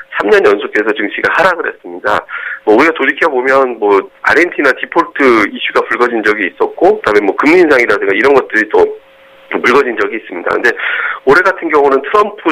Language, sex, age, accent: Korean, male, 40-59, native